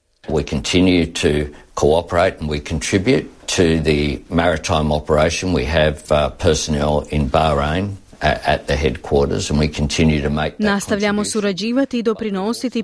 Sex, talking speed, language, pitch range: female, 100 wpm, Croatian, 150-220 Hz